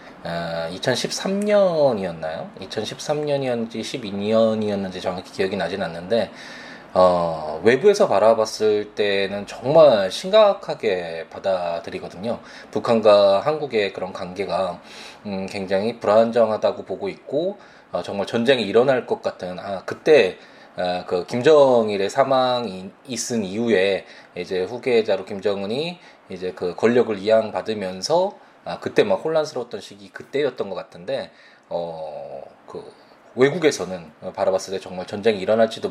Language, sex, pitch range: Korean, male, 95-125 Hz